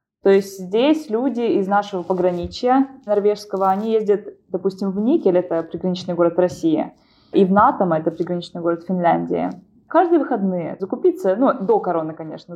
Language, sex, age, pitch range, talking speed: Russian, female, 20-39, 175-200 Hz, 150 wpm